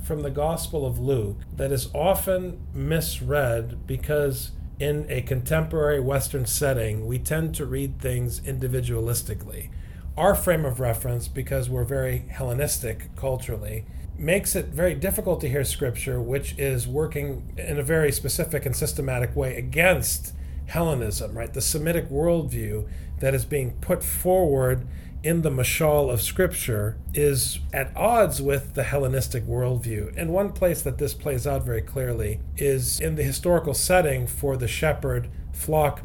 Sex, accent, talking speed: male, American, 145 wpm